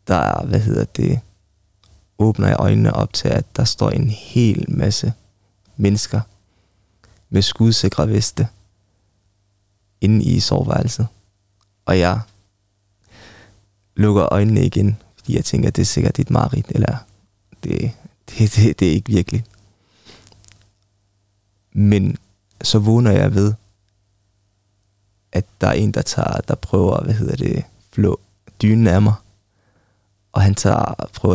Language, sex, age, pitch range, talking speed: Danish, male, 20-39, 100-115 Hz, 130 wpm